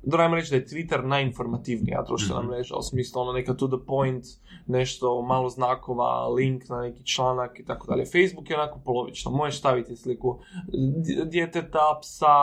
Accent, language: Serbian, Croatian